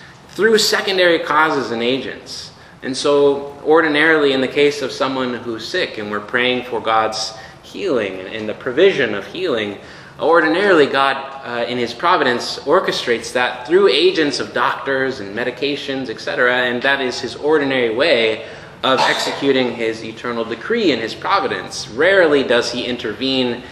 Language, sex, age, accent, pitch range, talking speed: English, male, 20-39, American, 115-165 Hz, 150 wpm